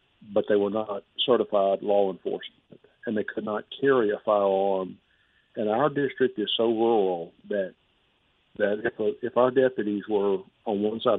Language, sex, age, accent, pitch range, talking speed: English, male, 50-69, American, 100-115 Hz, 165 wpm